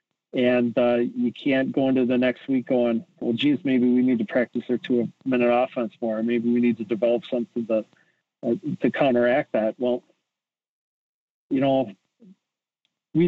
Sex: male